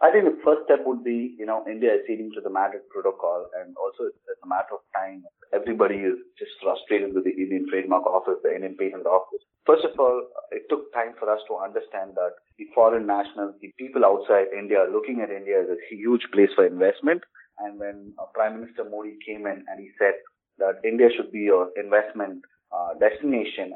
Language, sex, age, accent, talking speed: English, male, 30-49, Indian, 210 wpm